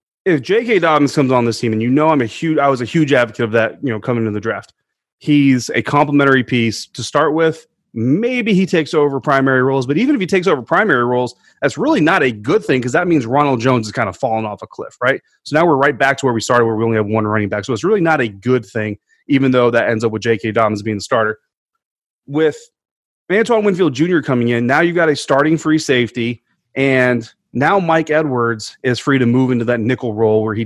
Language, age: English, 30-49